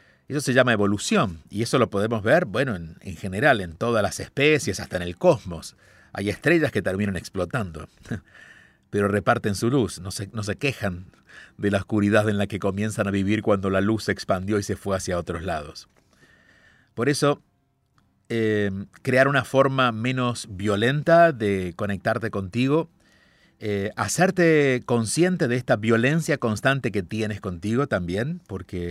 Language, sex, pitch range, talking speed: Spanish, male, 100-130 Hz, 160 wpm